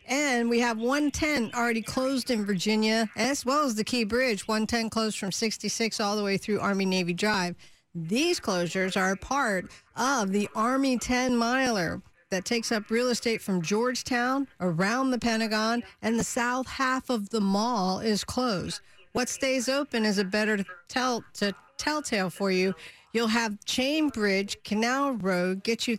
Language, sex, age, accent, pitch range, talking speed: English, female, 50-69, American, 200-250 Hz, 165 wpm